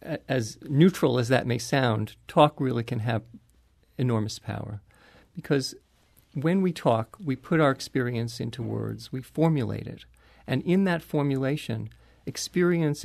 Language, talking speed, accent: English, 140 wpm, American